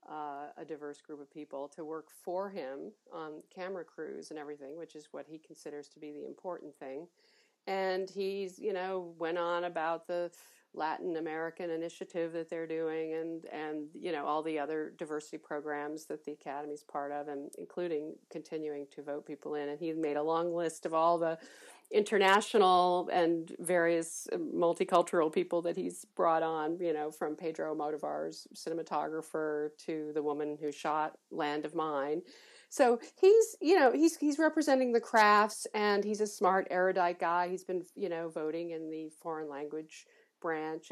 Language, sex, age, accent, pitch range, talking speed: English, female, 40-59, American, 155-190 Hz, 170 wpm